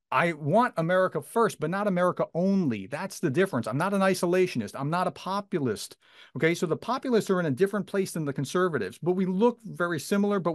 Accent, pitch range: American, 140-200 Hz